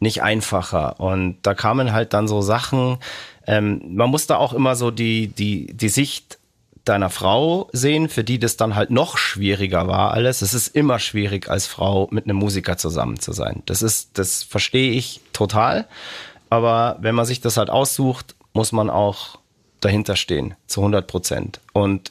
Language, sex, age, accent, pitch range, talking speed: German, male, 40-59, German, 105-130 Hz, 180 wpm